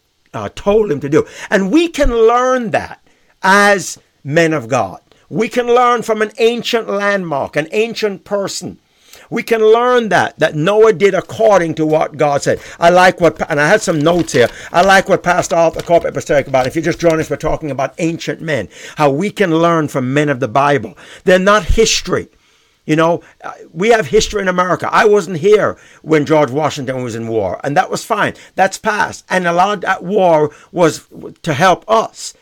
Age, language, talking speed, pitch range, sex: 60-79, English, 195 wpm, 165-220 Hz, male